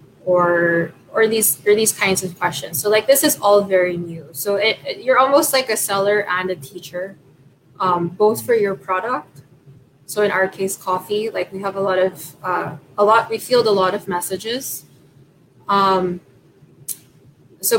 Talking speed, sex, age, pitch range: 180 wpm, female, 20-39, 175-210 Hz